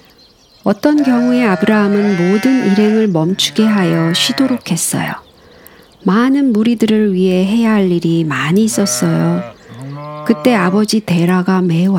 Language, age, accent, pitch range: Korean, 50-69, native, 180-235 Hz